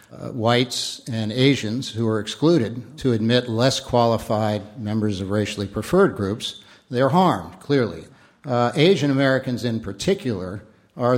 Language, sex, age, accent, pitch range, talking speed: English, male, 60-79, American, 110-130 Hz, 135 wpm